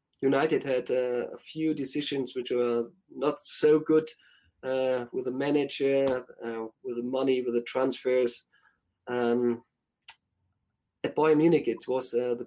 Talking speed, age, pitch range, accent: 145 wpm, 30-49, 120-145 Hz, German